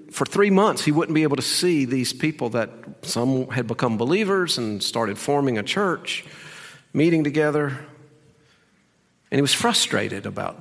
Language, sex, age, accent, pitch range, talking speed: English, male, 50-69, American, 110-145 Hz, 160 wpm